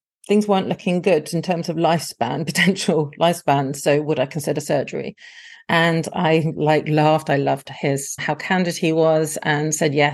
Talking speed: 170 wpm